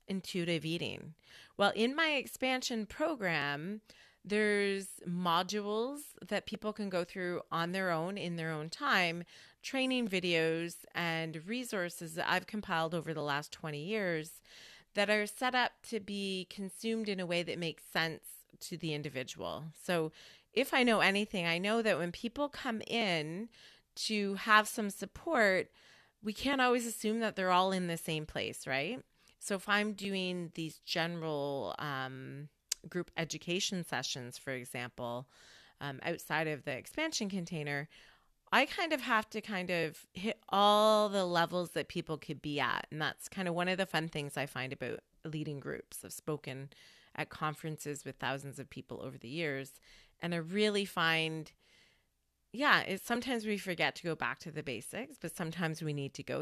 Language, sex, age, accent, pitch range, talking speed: English, female, 30-49, American, 155-210 Hz, 165 wpm